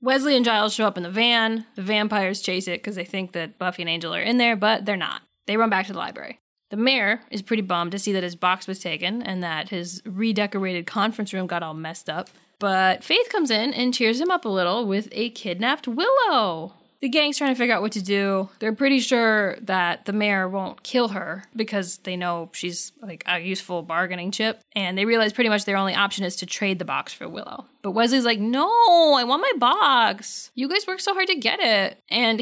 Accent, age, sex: American, 10-29, female